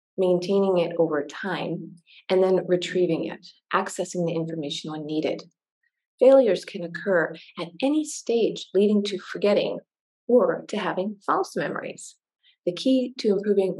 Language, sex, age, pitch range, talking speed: English, female, 40-59, 170-205 Hz, 135 wpm